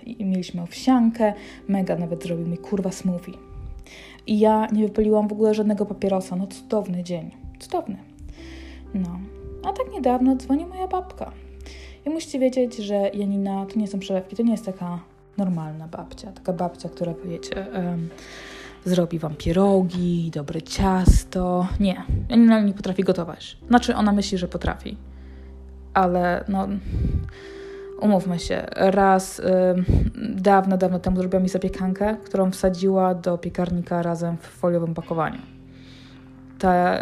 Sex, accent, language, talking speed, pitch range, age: female, native, Polish, 135 wpm, 170-200 Hz, 20-39